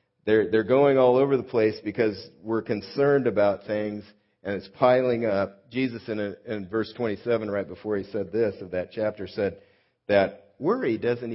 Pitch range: 95-120 Hz